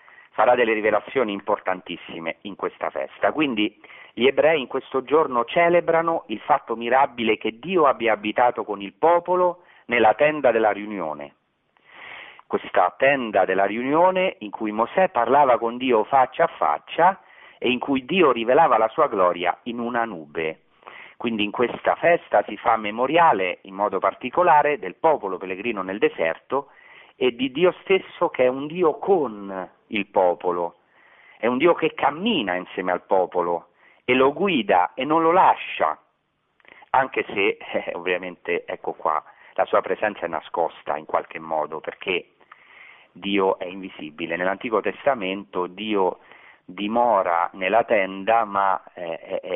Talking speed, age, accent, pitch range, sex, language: 145 wpm, 40-59, native, 95-150 Hz, male, Italian